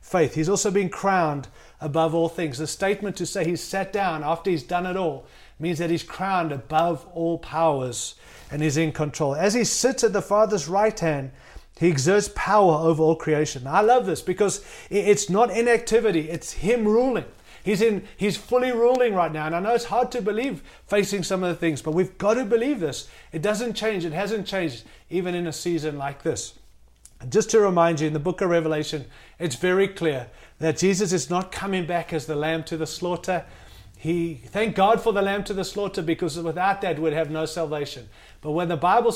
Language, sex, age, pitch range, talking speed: English, male, 30-49, 155-205 Hz, 210 wpm